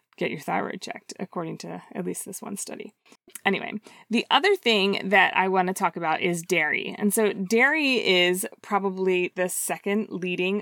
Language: English